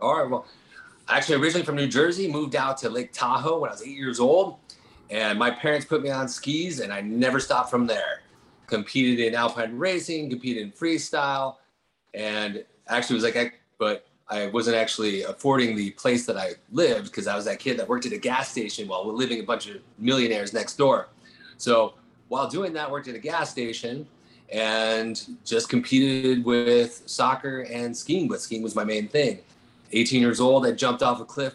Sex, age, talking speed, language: male, 30-49, 200 wpm, English